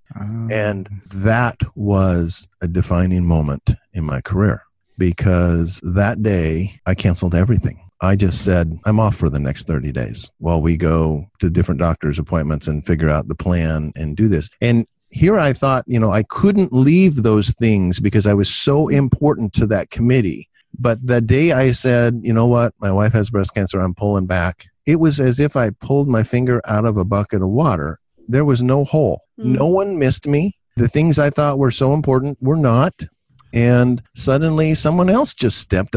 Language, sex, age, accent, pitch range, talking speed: English, male, 50-69, American, 95-135 Hz, 185 wpm